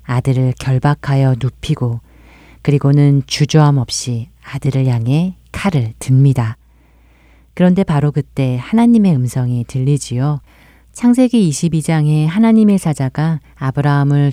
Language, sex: Korean, female